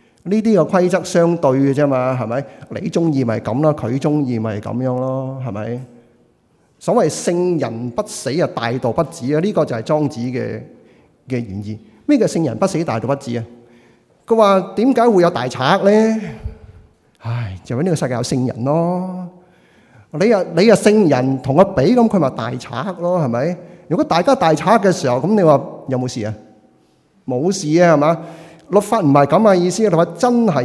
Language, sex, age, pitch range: Chinese, male, 30-49, 120-180 Hz